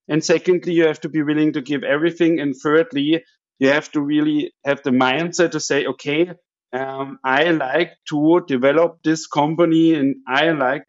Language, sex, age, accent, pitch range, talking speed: English, male, 50-69, German, 130-160 Hz, 175 wpm